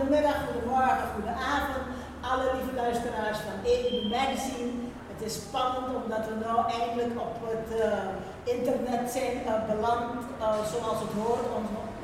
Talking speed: 150 wpm